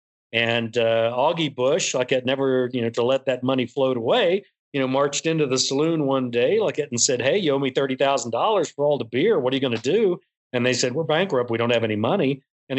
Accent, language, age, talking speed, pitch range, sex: American, English, 40-59, 250 wpm, 120-150 Hz, male